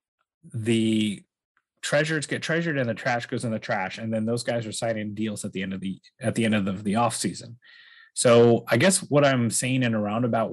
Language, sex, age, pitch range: English, male, 30-49, 110-130 Hz